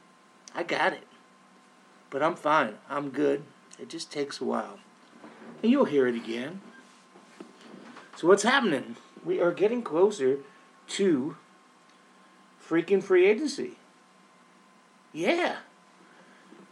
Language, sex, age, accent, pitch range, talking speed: English, male, 50-69, American, 135-180 Hz, 110 wpm